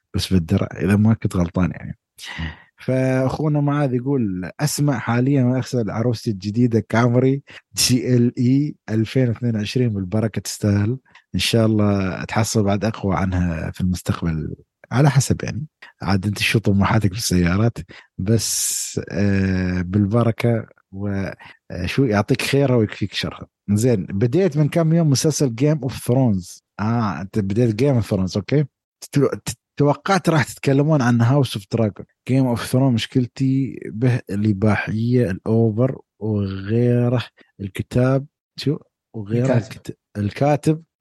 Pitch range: 105-130 Hz